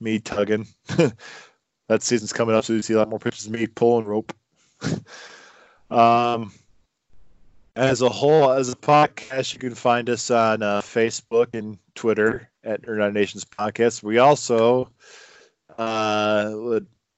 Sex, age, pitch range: male, 20-39, 105-120 Hz